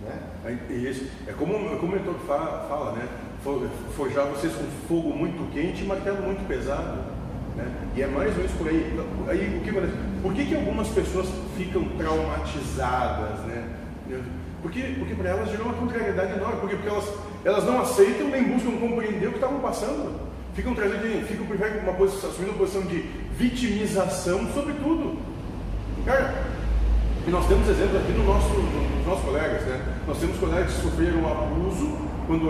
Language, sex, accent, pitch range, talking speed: Portuguese, male, Brazilian, 145-220 Hz, 175 wpm